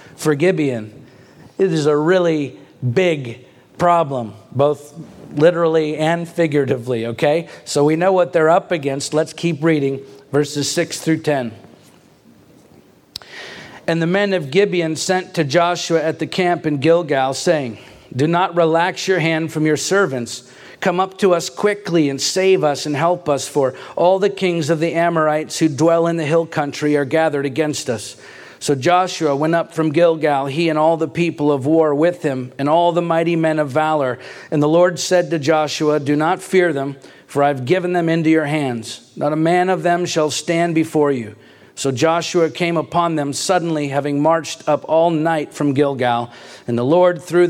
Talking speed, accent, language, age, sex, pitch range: 180 wpm, American, English, 50-69, male, 140-170 Hz